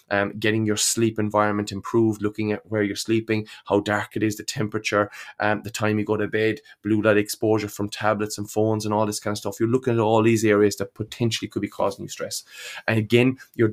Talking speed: 230 wpm